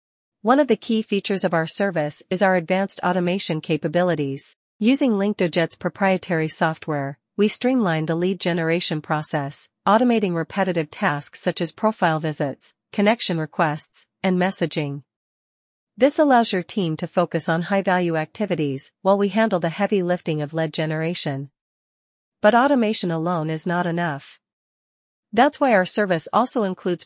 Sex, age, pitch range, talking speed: female, 40-59, 160-200 Hz, 140 wpm